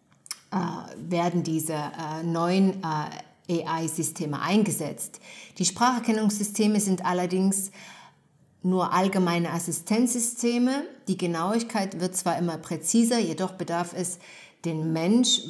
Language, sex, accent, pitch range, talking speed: German, female, German, 165-215 Hz, 90 wpm